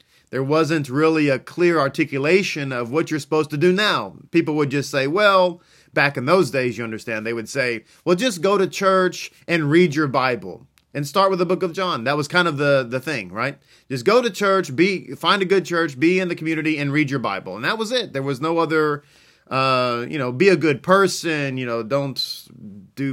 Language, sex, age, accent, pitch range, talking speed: English, male, 30-49, American, 135-175 Hz, 225 wpm